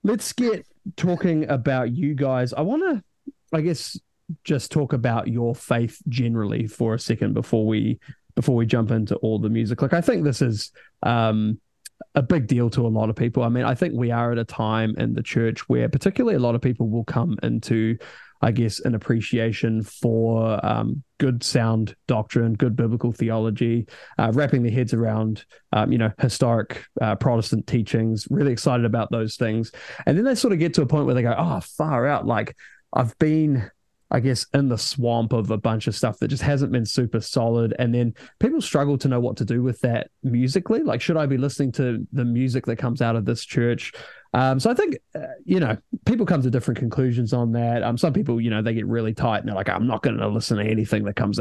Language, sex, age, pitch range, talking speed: English, male, 20-39, 115-140 Hz, 220 wpm